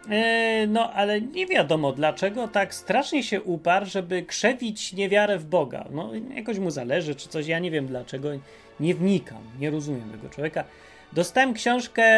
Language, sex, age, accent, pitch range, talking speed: Polish, male, 30-49, native, 145-205 Hz, 160 wpm